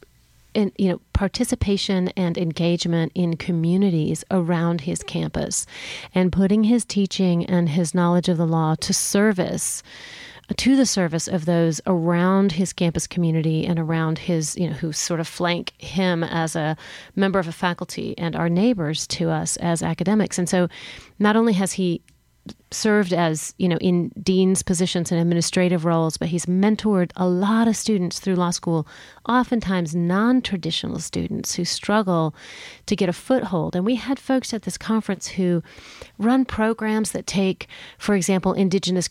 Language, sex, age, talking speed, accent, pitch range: English, female, 30-49, 160 wpm, American, 170-200 Hz